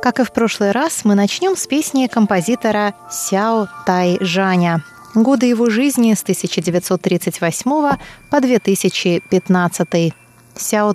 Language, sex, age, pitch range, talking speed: Russian, female, 20-39, 175-240 Hz, 115 wpm